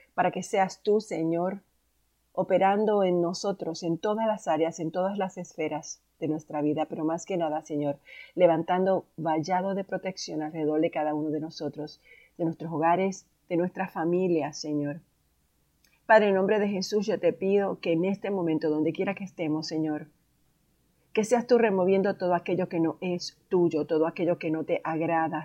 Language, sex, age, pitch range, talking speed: Spanish, female, 40-59, 150-185 Hz, 175 wpm